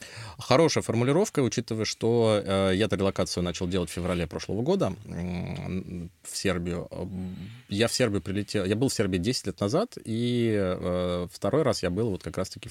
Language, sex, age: Russian, male, 20-39